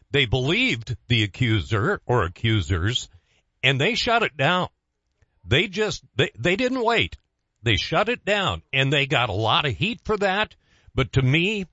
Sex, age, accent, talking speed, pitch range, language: male, 50-69, American, 170 wpm, 115-170 Hz, English